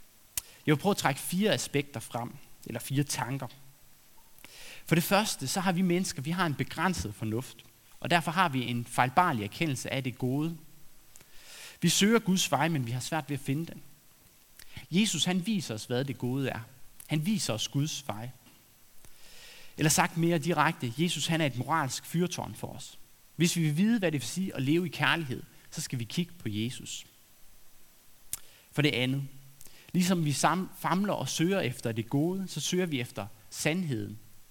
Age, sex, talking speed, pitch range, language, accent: 30-49, male, 185 wpm, 125-170 Hz, Danish, native